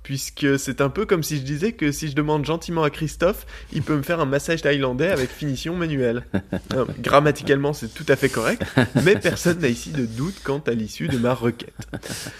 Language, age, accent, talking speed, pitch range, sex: French, 20-39, French, 210 wpm, 120-160 Hz, male